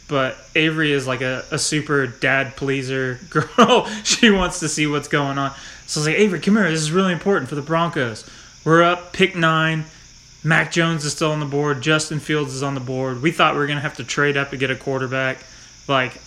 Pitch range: 130-160 Hz